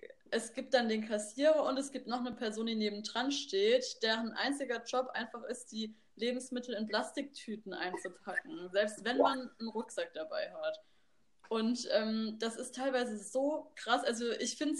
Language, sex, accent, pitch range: German, female, German, 220-275 Hz